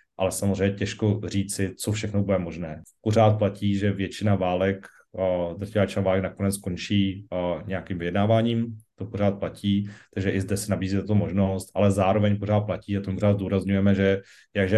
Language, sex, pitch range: Slovak, male, 95-105 Hz